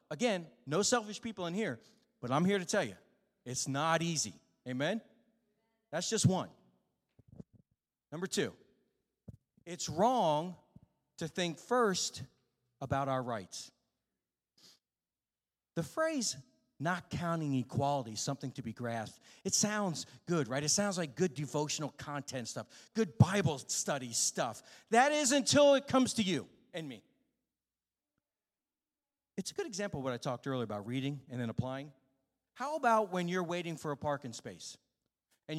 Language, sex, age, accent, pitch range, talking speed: English, male, 40-59, American, 140-225 Hz, 145 wpm